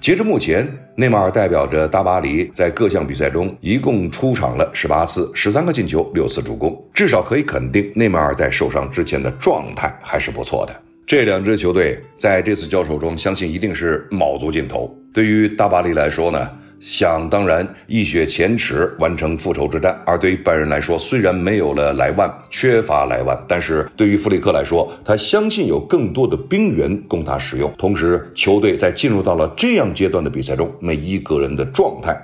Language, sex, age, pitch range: Chinese, male, 50-69, 80-105 Hz